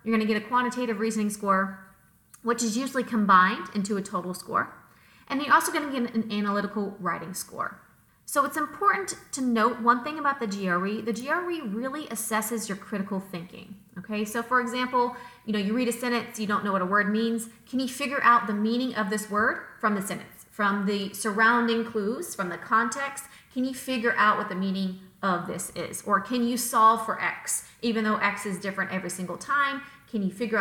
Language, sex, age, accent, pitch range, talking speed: English, female, 30-49, American, 200-245 Hz, 205 wpm